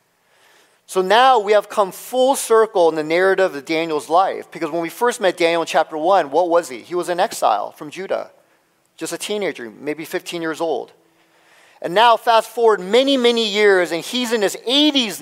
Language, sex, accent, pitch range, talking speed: English, male, American, 155-220 Hz, 195 wpm